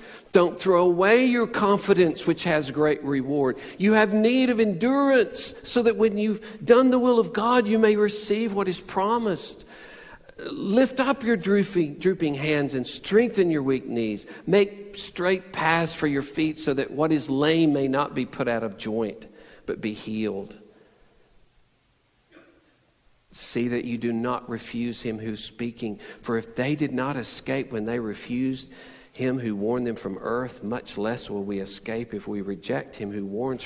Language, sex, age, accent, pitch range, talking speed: English, male, 50-69, American, 105-165 Hz, 170 wpm